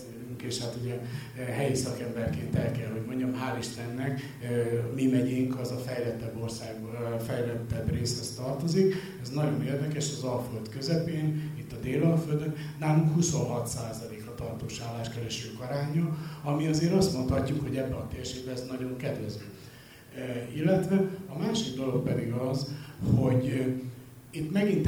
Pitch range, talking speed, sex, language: 120-140 Hz, 130 wpm, male, Hungarian